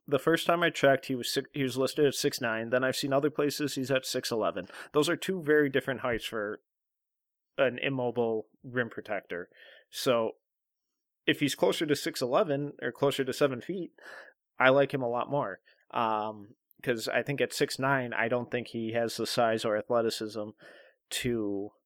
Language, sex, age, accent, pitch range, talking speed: English, male, 30-49, American, 115-140 Hz, 175 wpm